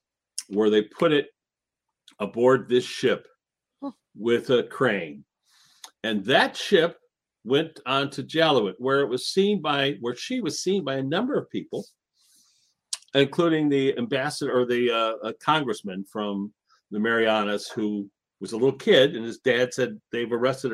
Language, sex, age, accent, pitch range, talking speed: English, male, 50-69, American, 115-160 Hz, 155 wpm